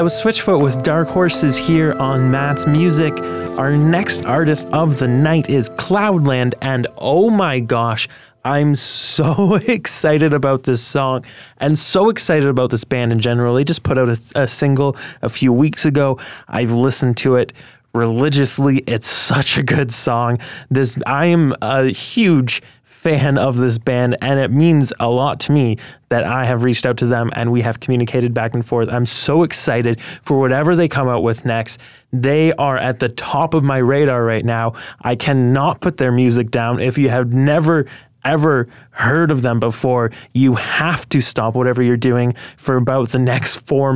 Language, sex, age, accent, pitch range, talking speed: Russian, male, 20-39, American, 120-150 Hz, 185 wpm